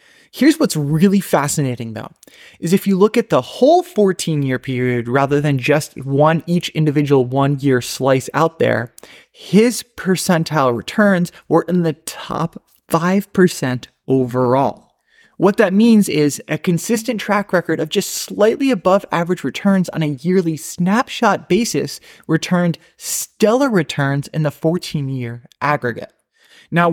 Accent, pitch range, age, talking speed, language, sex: American, 135-180 Hz, 20-39, 135 wpm, English, male